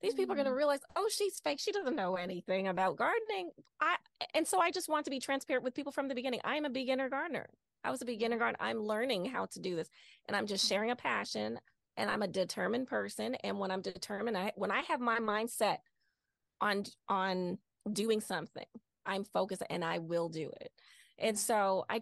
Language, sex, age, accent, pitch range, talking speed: English, female, 20-39, American, 190-255 Hz, 220 wpm